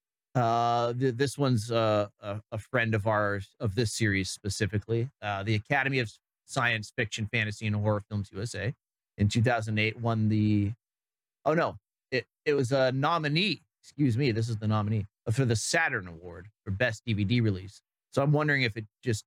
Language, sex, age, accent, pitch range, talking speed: English, male, 30-49, American, 110-155 Hz, 175 wpm